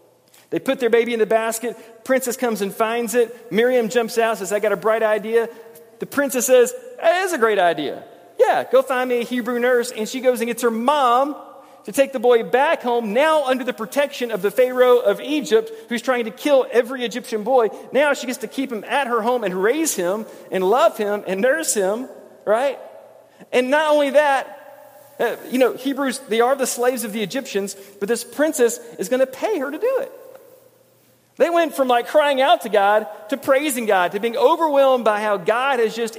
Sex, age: male, 40-59